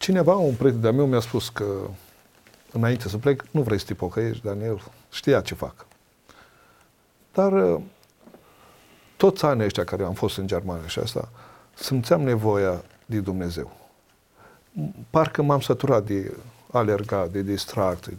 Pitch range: 100-135 Hz